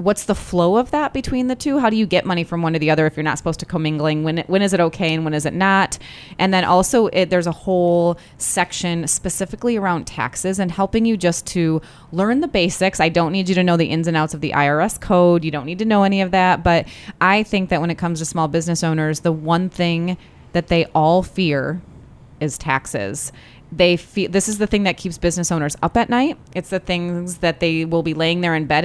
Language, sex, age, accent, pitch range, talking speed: English, female, 20-39, American, 160-190 Hz, 250 wpm